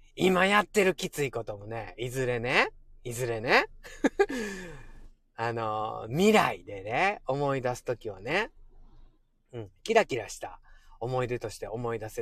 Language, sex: Japanese, male